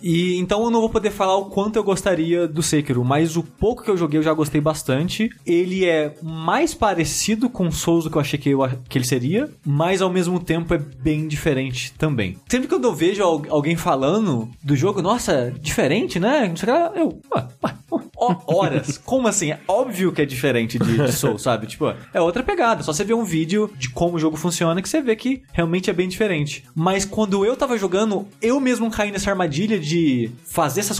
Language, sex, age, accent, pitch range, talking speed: Portuguese, male, 20-39, Brazilian, 145-195 Hz, 210 wpm